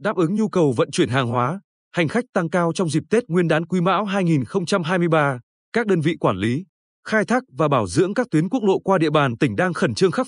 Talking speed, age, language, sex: 245 wpm, 20-39, Vietnamese, male